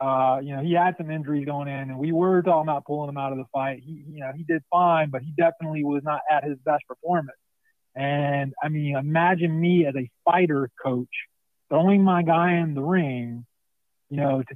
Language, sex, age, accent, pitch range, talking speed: English, male, 30-49, American, 145-200 Hz, 220 wpm